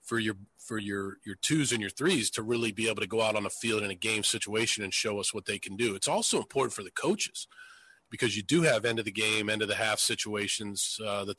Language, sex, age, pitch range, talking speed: English, male, 40-59, 100-115 Hz, 270 wpm